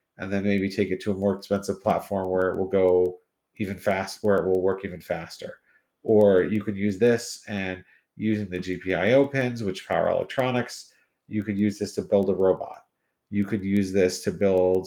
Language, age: English, 40-59